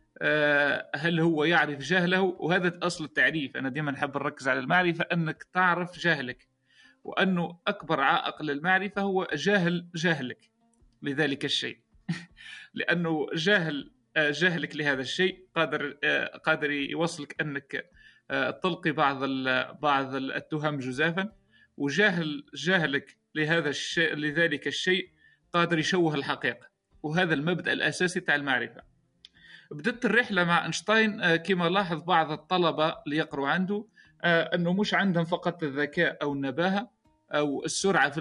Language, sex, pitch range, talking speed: Arabic, male, 150-175 Hz, 115 wpm